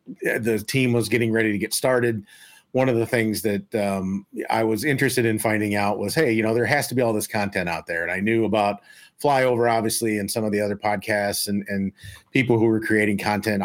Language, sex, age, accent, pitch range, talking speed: English, male, 40-59, American, 100-125 Hz, 230 wpm